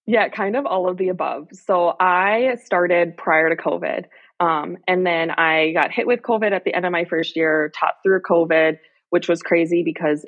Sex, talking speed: female, 205 wpm